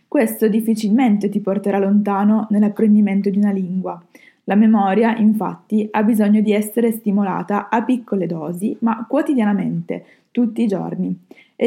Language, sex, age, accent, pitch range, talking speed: Italian, female, 20-39, native, 200-235 Hz, 135 wpm